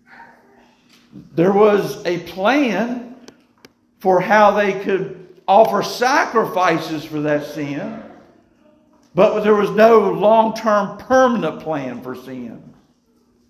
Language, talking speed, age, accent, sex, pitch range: English, 100 wpm, 50-69, American, male, 170-250 Hz